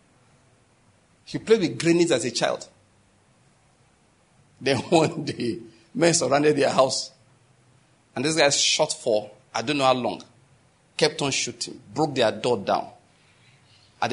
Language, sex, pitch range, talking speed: English, male, 125-155 Hz, 135 wpm